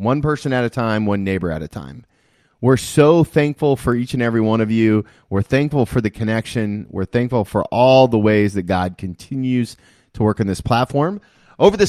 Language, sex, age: English, male, 30-49